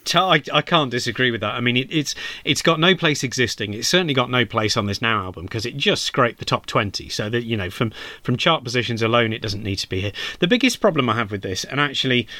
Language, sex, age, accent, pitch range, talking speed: English, male, 30-49, British, 110-140 Hz, 265 wpm